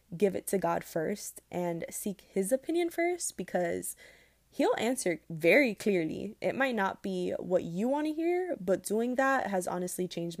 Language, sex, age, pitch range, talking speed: English, female, 20-39, 175-235 Hz, 175 wpm